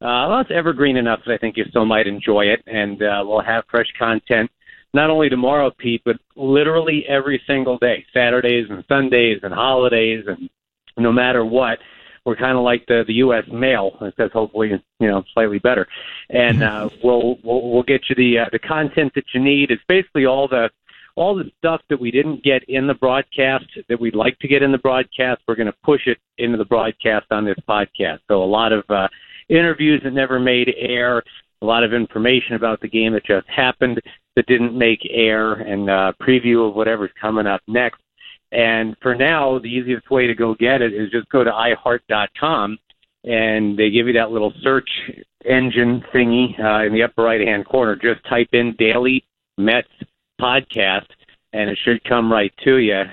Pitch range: 110-130 Hz